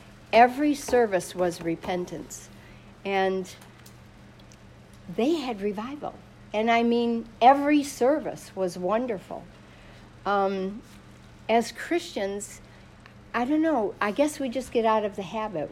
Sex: female